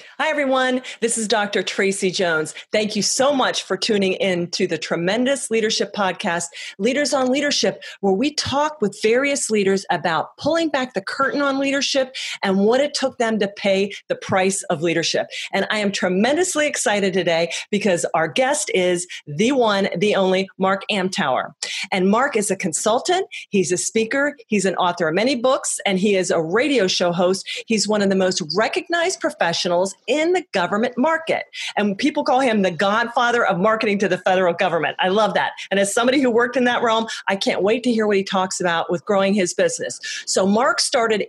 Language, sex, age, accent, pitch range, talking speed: English, female, 40-59, American, 190-260 Hz, 195 wpm